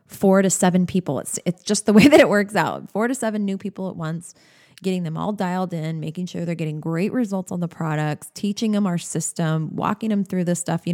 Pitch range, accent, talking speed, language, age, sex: 165-205 Hz, American, 240 wpm, English, 20-39, female